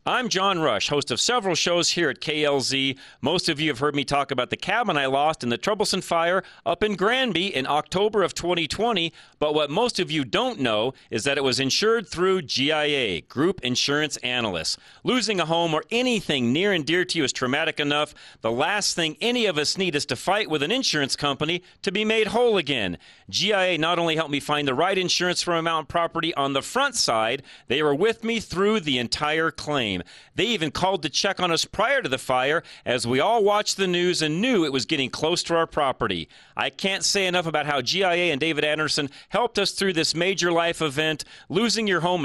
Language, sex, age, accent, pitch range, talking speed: English, male, 40-59, American, 145-190 Hz, 220 wpm